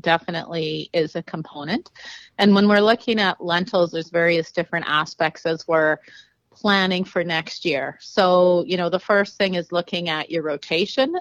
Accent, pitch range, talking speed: American, 160-200 Hz, 165 wpm